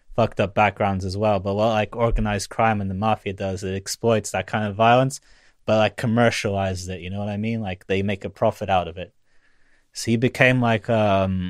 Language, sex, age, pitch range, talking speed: English, male, 20-39, 95-110 Hz, 220 wpm